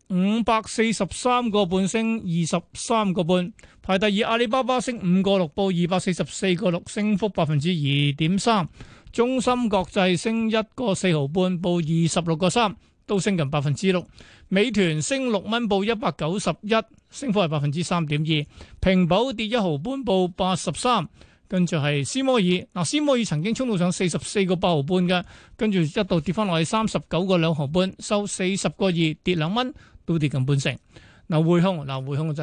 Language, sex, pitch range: Chinese, male, 165-210 Hz